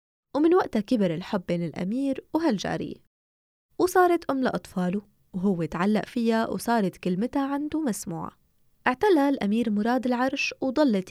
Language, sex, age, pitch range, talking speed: Arabic, female, 20-39, 190-270 Hz, 120 wpm